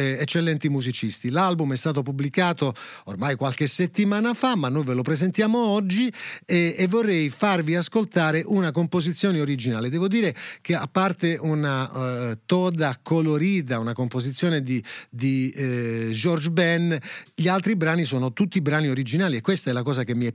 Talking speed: 160 wpm